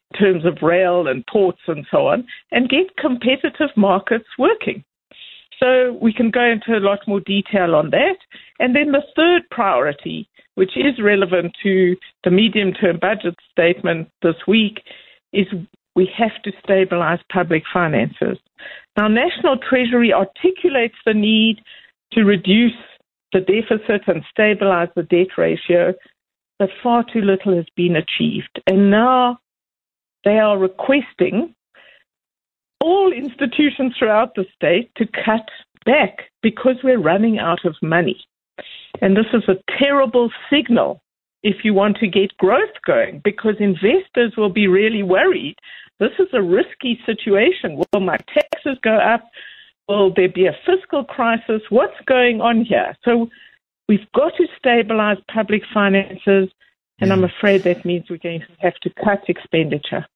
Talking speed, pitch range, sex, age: 145 wpm, 190-250 Hz, female, 60-79